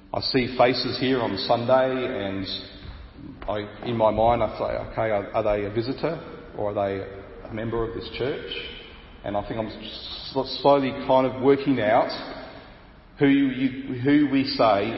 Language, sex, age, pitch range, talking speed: English, male, 40-59, 100-130 Hz, 155 wpm